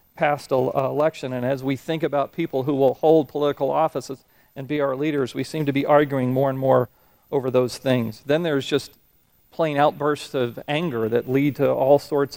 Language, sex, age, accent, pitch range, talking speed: English, male, 40-59, American, 130-150 Hz, 195 wpm